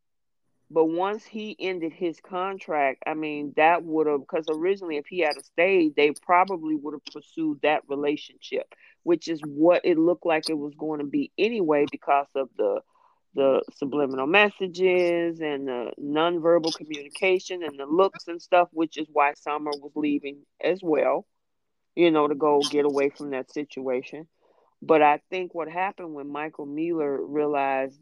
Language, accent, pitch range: English, American, 145-180 Hz